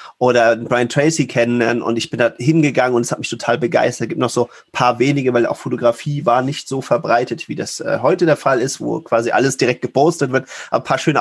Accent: German